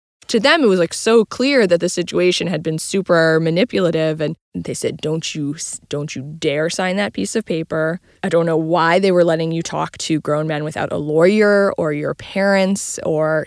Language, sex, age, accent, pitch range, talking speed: English, female, 20-39, American, 165-195 Hz, 205 wpm